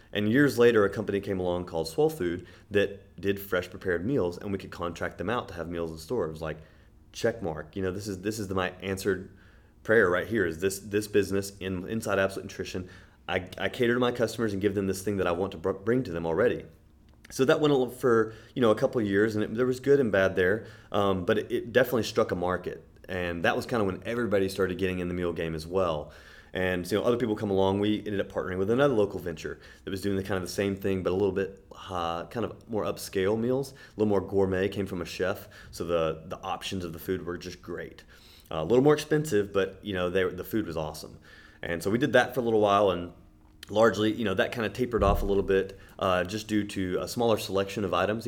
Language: English